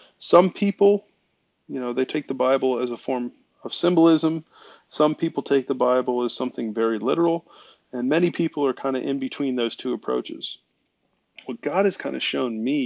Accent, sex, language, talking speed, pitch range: American, male, English, 185 wpm, 120-140 Hz